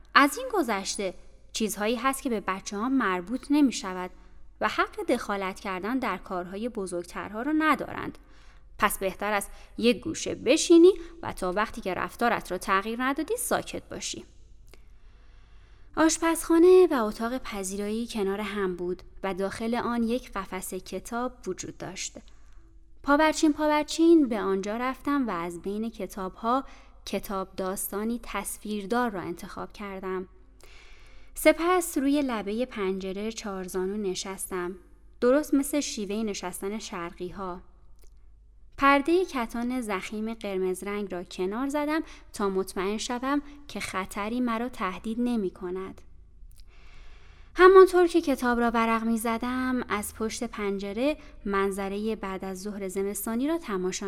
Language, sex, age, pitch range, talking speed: Persian, female, 20-39, 190-260 Hz, 125 wpm